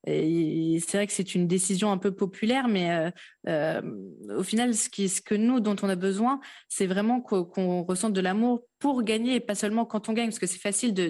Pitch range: 185-225 Hz